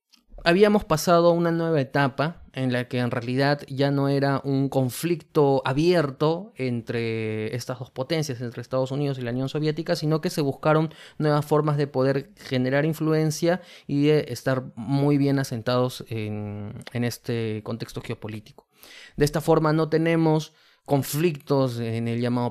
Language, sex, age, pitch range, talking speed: Spanish, male, 20-39, 125-160 Hz, 150 wpm